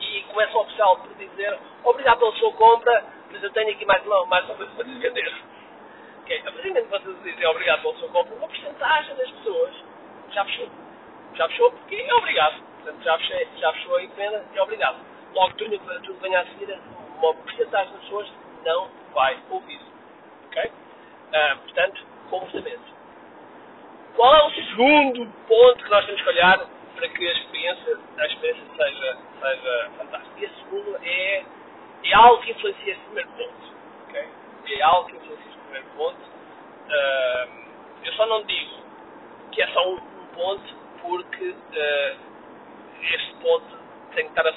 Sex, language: male, Portuguese